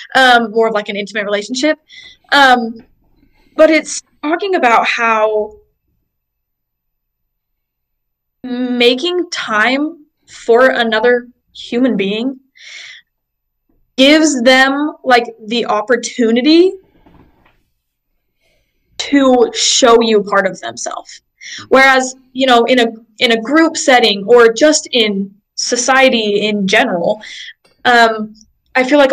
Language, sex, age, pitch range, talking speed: English, female, 20-39, 210-260 Hz, 100 wpm